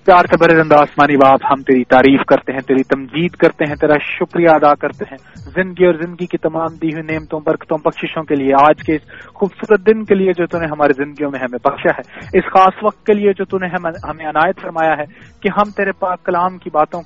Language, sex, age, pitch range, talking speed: English, male, 30-49, 155-210 Hz, 210 wpm